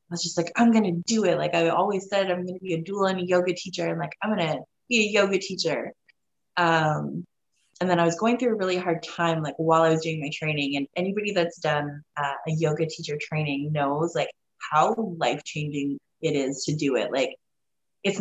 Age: 20-39